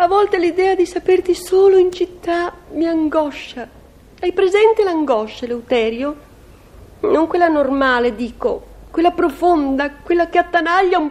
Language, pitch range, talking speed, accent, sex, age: Italian, 255-360 Hz, 130 wpm, native, female, 40-59